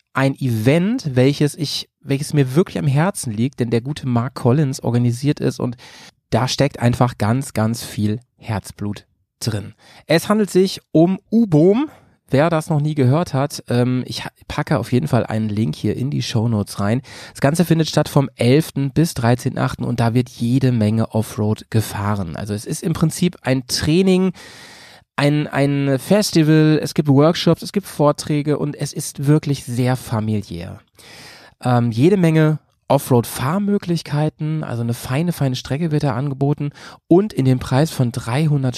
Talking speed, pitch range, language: 160 wpm, 115-155 Hz, German